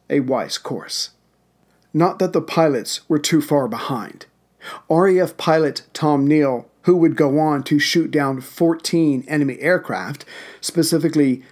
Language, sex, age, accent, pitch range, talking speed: English, male, 50-69, American, 145-170 Hz, 135 wpm